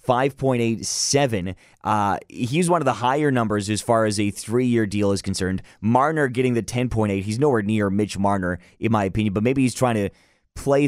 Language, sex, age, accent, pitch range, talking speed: English, male, 30-49, American, 105-135 Hz, 175 wpm